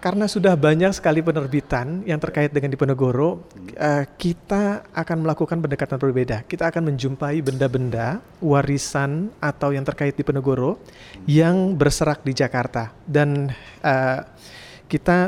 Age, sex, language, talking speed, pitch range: 40-59, male, Indonesian, 115 wpm, 135-165 Hz